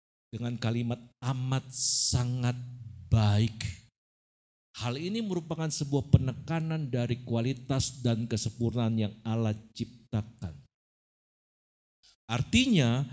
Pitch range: 125-195 Hz